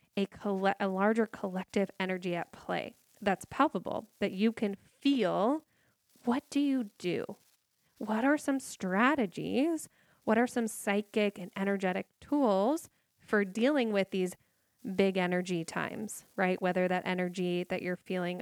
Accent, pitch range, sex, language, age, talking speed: American, 185-235 Hz, female, English, 10-29, 135 wpm